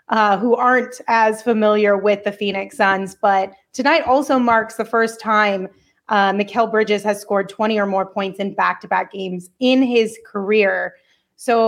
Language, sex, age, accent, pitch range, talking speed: English, female, 30-49, American, 200-235 Hz, 165 wpm